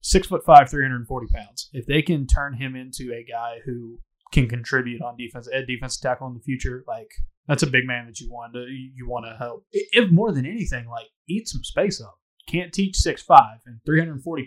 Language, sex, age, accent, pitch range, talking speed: English, male, 20-39, American, 120-145 Hz, 235 wpm